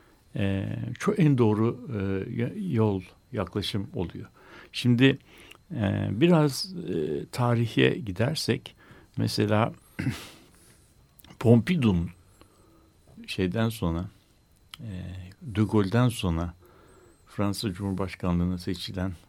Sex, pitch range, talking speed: male, 95-120 Hz, 65 wpm